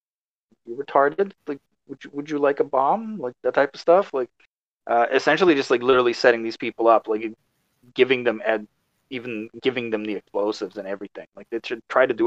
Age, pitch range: 20-39, 100-120 Hz